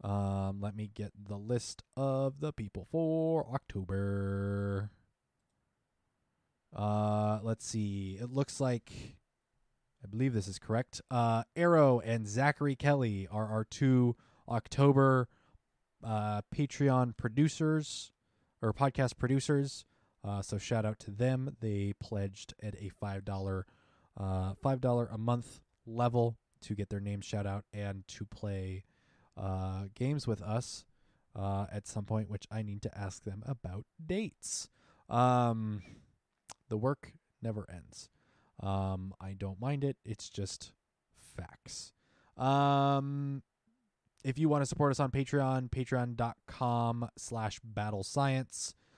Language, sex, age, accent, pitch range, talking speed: English, male, 20-39, American, 100-130 Hz, 125 wpm